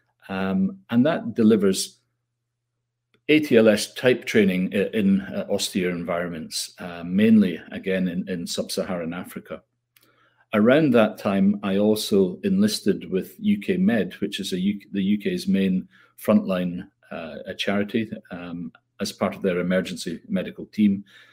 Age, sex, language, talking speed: 40-59, male, English, 125 wpm